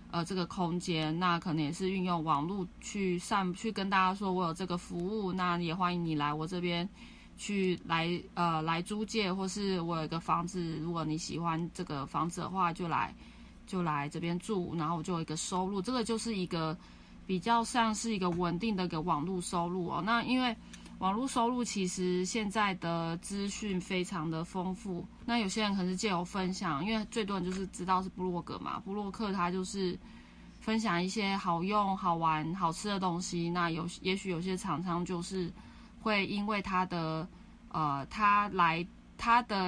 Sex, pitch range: female, 170-205 Hz